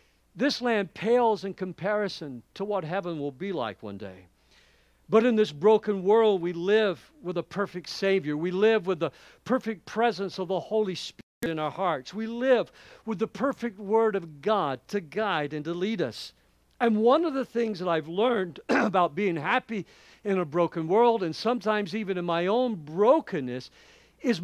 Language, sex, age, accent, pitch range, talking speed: English, male, 50-69, American, 165-225 Hz, 180 wpm